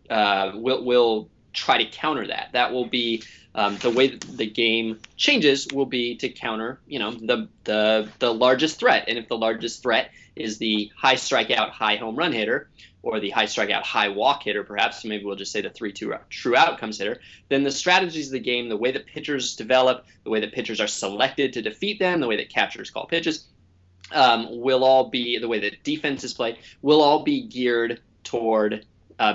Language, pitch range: English, 105-135 Hz